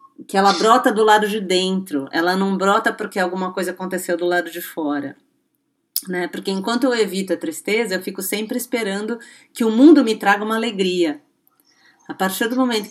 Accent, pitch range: Brazilian, 185-265 Hz